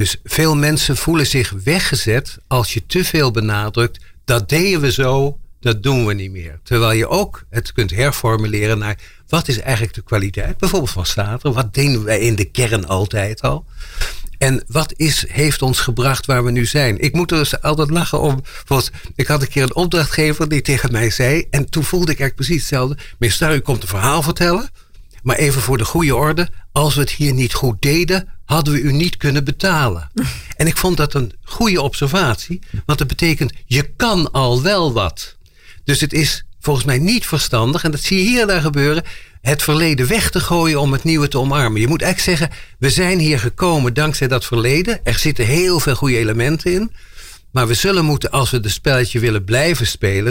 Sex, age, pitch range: male, 60-79, 115-155 Hz